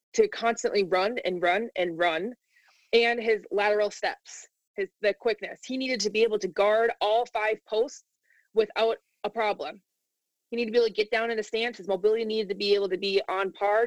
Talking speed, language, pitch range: 210 wpm, English, 195-225 Hz